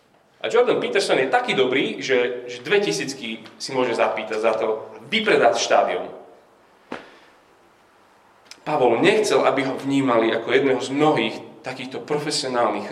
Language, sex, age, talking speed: Slovak, male, 30-49, 130 wpm